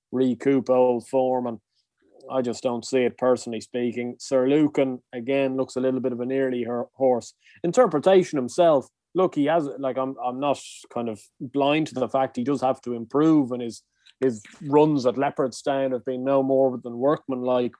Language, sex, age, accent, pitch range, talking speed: English, male, 20-39, Irish, 125-140 Hz, 185 wpm